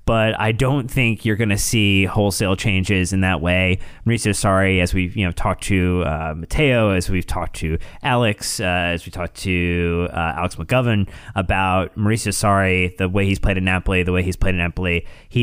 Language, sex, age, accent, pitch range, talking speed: English, male, 20-39, American, 90-115 Hz, 200 wpm